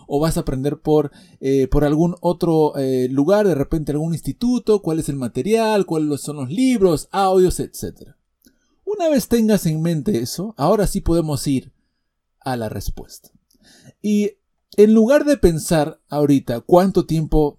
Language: English